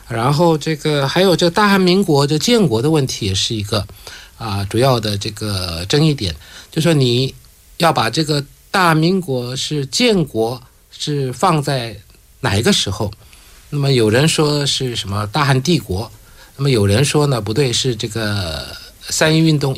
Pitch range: 105-150 Hz